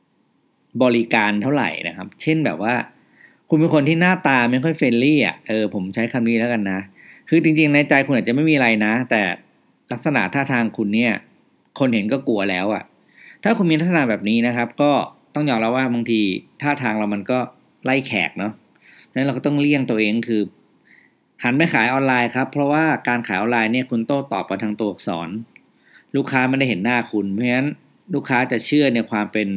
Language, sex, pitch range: English, male, 110-140 Hz